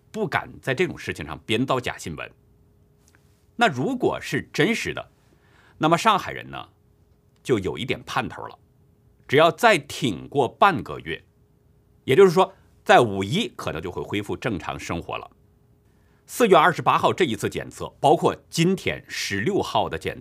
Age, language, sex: 50-69, Chinese, male